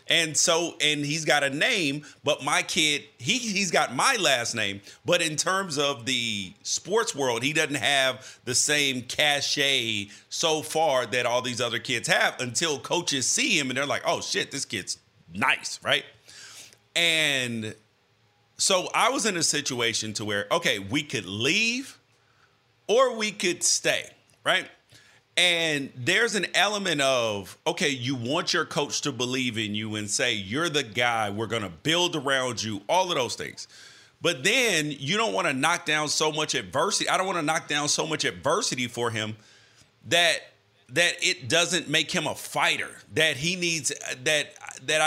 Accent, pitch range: American, 120-165 Hz